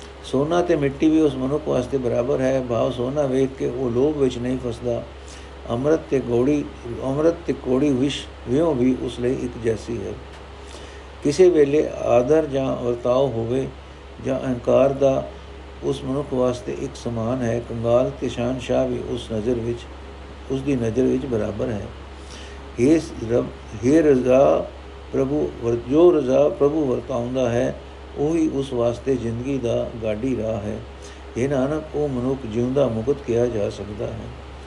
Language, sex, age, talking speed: Punjabi, male, 60-79, 150 wpm